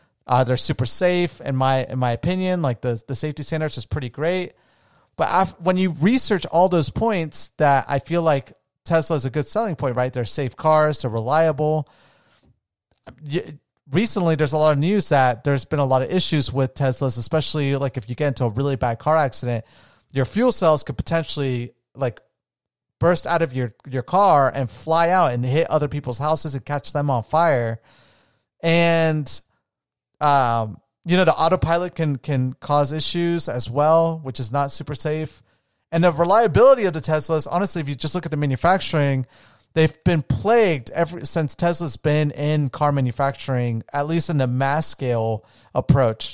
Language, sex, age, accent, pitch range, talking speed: English, male, 30-49, American, 130-165 Hz, 185 wpm